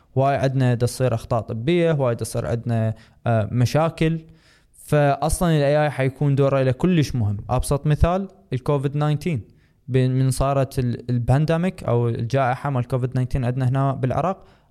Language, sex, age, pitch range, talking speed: Arabic, male, 20-39, 120-145 Hz, 135 wpm